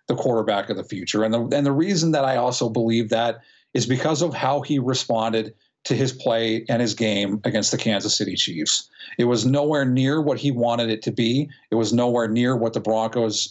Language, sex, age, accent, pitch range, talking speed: English, male, 40-59, American, 115-140 Hz, 215 wpm